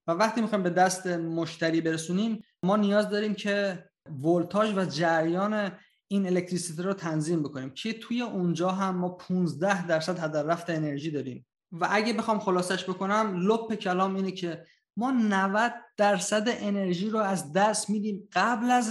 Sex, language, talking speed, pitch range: male, Persian, 150 wpm, 160-200 Hz